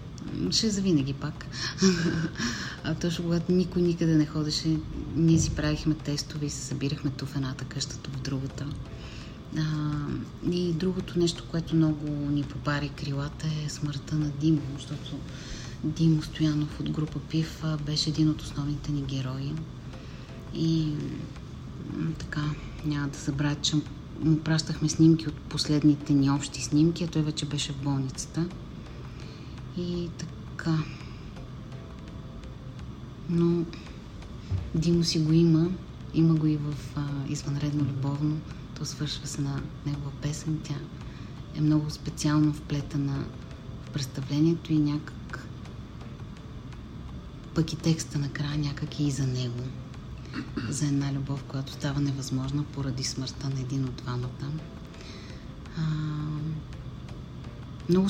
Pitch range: 135-155 Hz